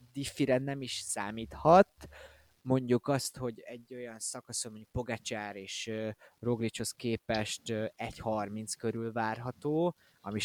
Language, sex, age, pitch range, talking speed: Hungarian, male, 20-39, 110-125 Hz, 115 wpm